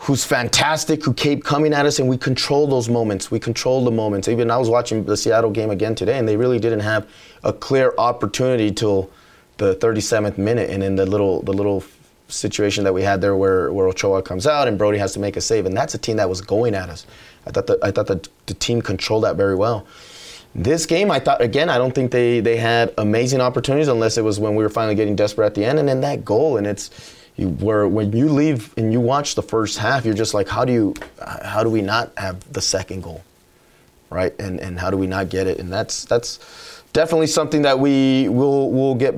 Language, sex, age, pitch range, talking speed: English, male, 20-39, 100-125 Hz, 240 wpm